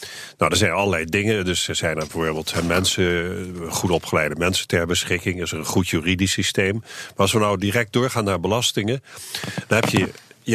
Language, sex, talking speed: Dutch, male, 200 wpm